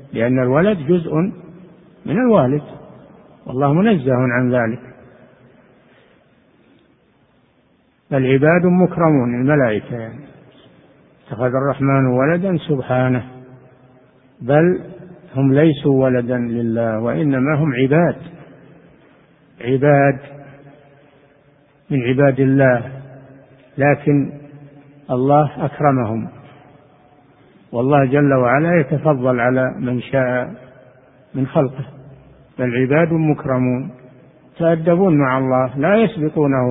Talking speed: 80 wpm